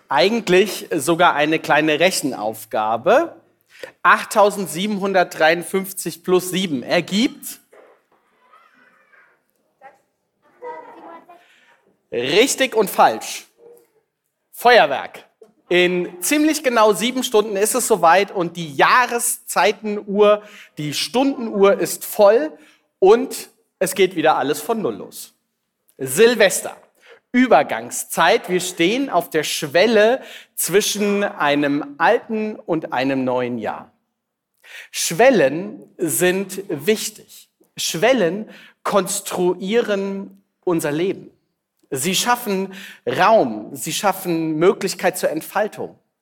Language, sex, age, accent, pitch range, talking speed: German, male, 40-59, German, 170-225 Hz, 85 wpm